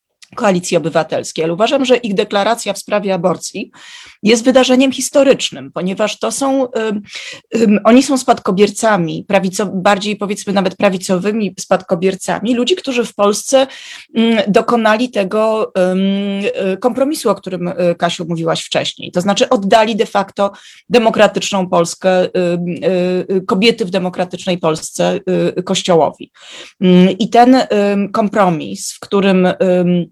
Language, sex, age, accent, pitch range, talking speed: Polish, female, 30-49, native, 180-230 Hz, 130 wpm